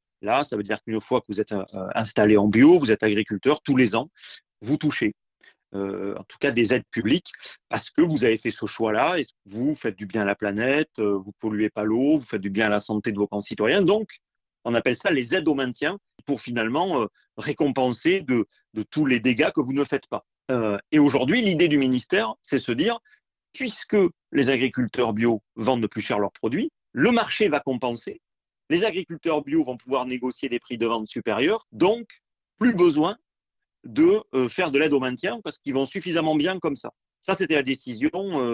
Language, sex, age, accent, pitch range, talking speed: French, male, 40-59, French, 110-155 Hz, 205 wpm